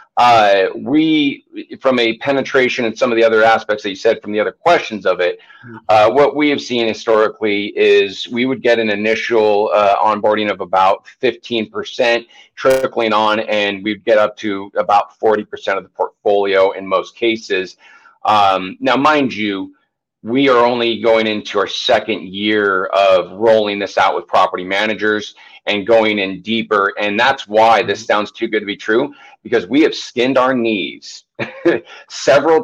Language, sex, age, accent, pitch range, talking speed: English, male, 40-59, American, 105-130 Hz, 170 wpm